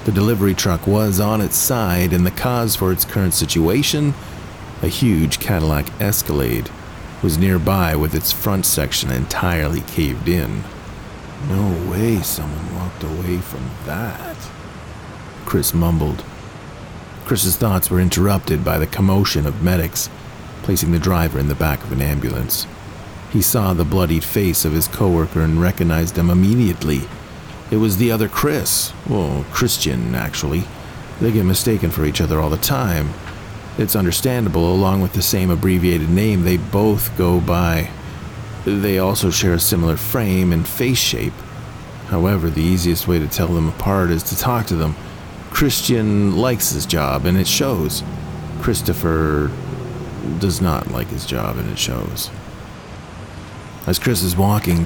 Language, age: English, 40-59